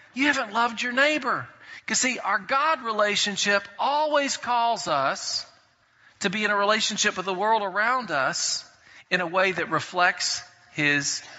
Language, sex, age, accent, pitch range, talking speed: English, male, 40-59, American, 205-280 Hz, 160 wpm